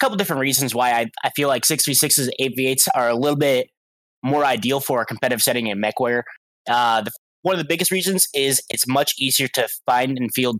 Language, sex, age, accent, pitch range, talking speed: English, male, 20-39, American, 120-145 Hz, 205 wpm